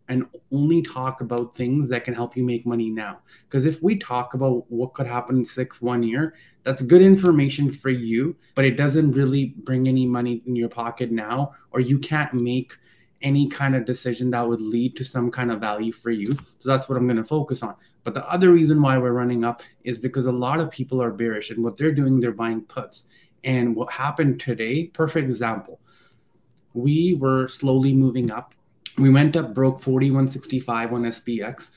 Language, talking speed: English, 200 wpm